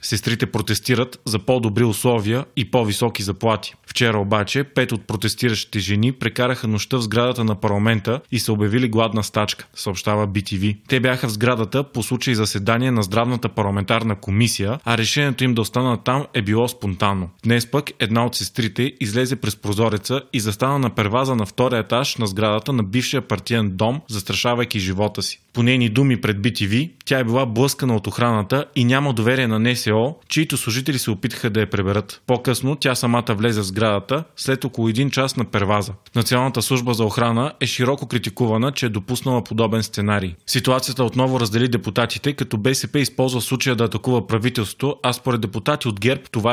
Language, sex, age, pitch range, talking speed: Bulgarian, male, 20-39, 110-130 Hz, 170 wpm